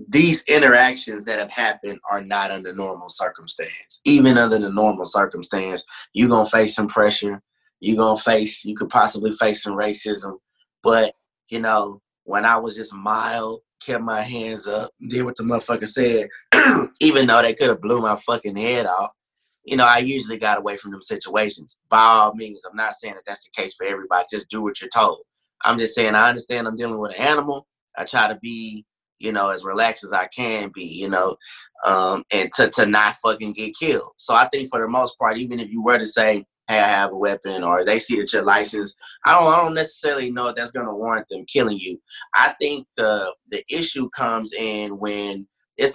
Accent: American